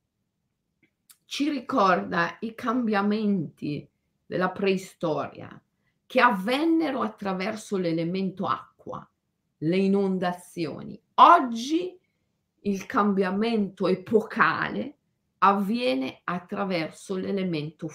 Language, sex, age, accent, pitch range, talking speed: Italian, female, 50-69, native, 175-230 Hz, 65 wpm